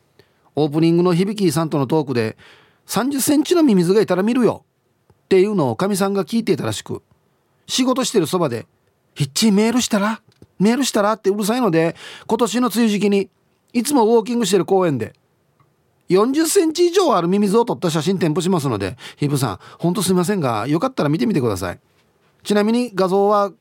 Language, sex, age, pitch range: Japanese, male, 40-59, 150-240 Hz